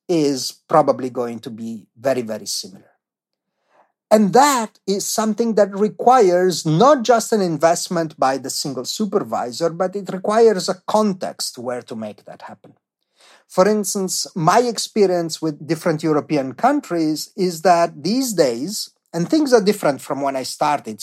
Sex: male